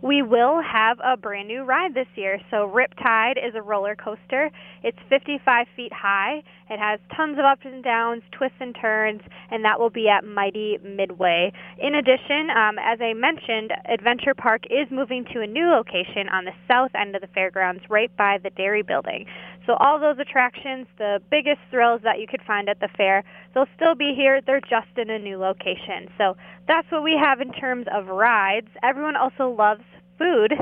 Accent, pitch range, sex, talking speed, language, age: American, 200-260 Hz, female, 195 wpm, English, 20-39